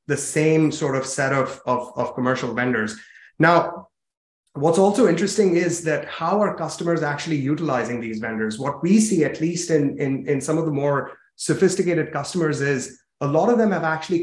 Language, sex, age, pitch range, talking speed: English, male, 30-49, 130-160 Hz, 185 wpm